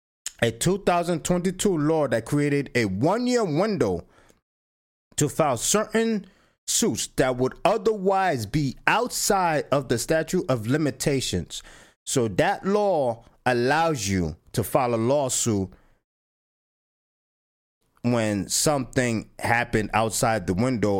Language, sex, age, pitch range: English, male, 30-49, 110-165 Hz